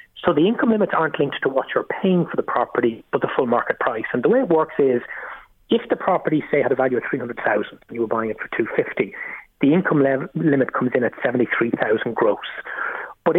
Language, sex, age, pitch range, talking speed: English, male, 30-49, 120-150 Hz, 230 wpm